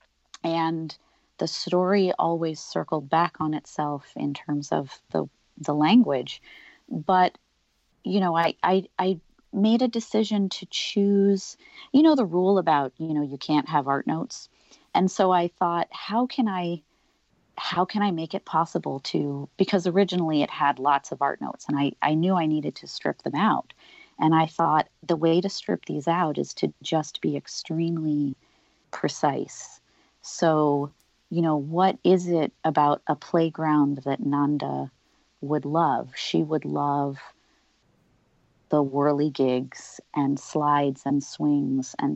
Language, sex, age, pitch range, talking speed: English, female, 40-59, 145-180 Hz, 155 wpm